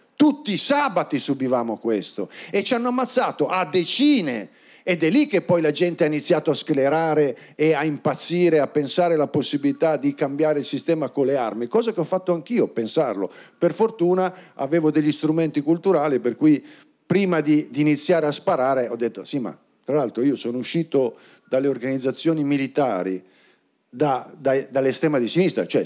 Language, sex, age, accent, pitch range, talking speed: Italian, male, 50-69, native, 135-175 Hz, 170 wpm